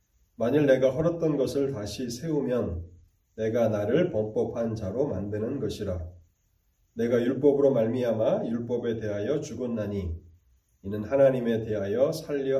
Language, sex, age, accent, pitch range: Korean, male, 30-49, native, 100-130 Hz